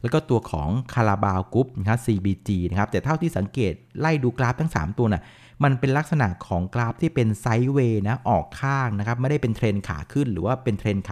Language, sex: Thai, male